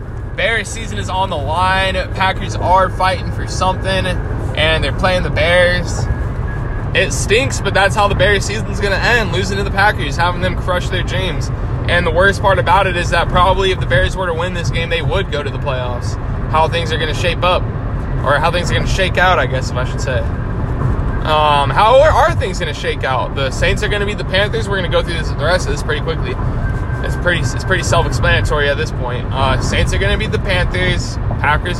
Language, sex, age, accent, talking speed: English, male, 20-39, American, 240 wpm